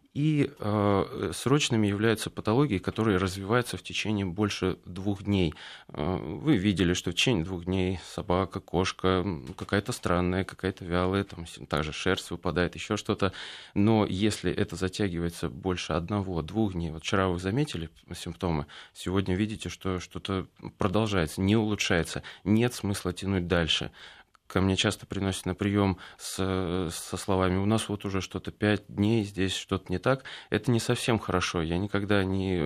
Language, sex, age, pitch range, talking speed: Russian, male, 20-39, 90-105 Hz, 150 wpm